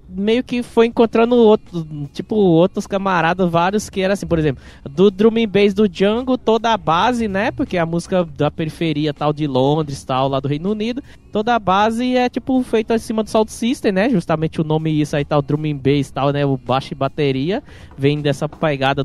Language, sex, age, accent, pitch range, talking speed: Portuguese, male, 20-39, Brazilian, 135-195 Hz, 200 wpm